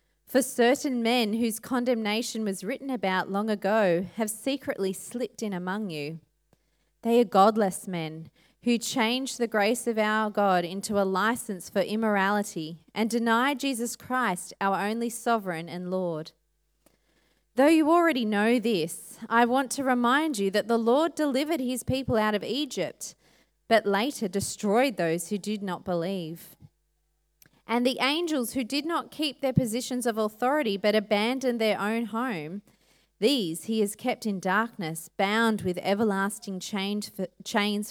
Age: 20-39